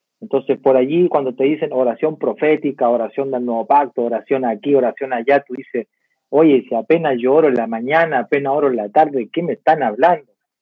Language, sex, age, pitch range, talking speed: Spanish, male, 40-59, 135-185 Hz, 200 wpm